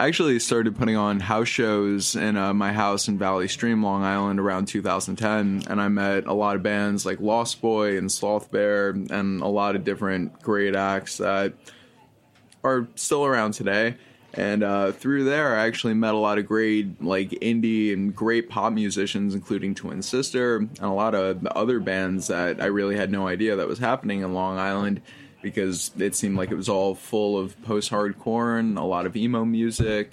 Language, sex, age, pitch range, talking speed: English, male, 20-39, 95-110 Hz, 195 wpm